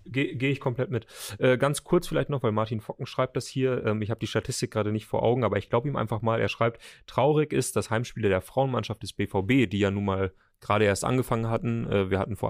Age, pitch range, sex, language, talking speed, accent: 30-49, 100-115 Hz, male, German, 255 wpm, German